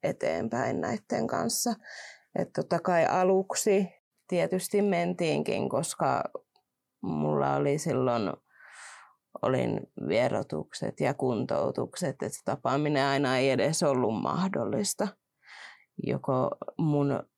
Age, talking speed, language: 30-49, 85 wpm, Finnish